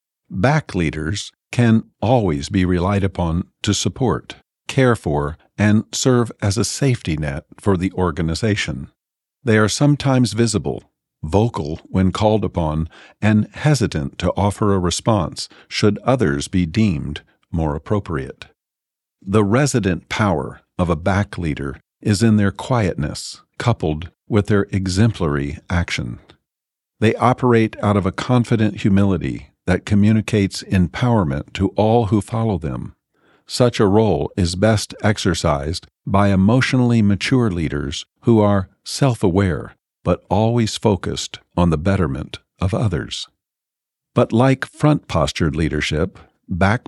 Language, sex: English, male